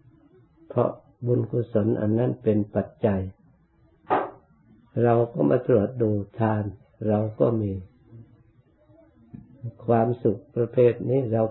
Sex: male